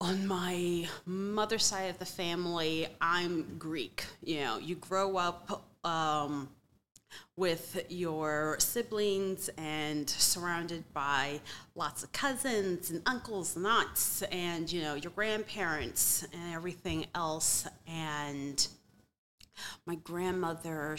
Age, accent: 30-49, American